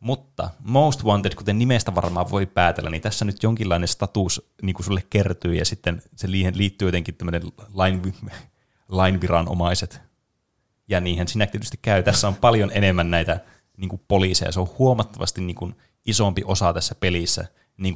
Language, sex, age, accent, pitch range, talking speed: Finnish, male, 30-49, native, 85-105 Hz, 150 wpm